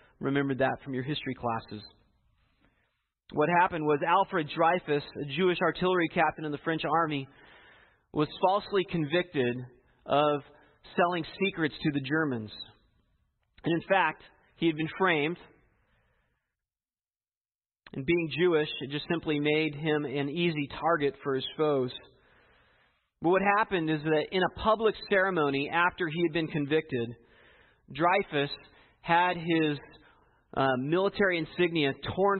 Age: 40-59